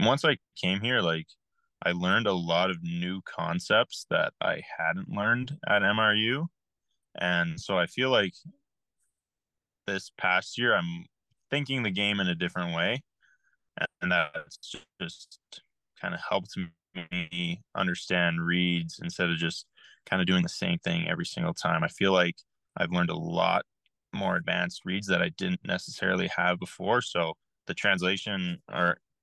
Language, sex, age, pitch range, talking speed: English, male, 20-39, 85-115 Hz, 155 wpm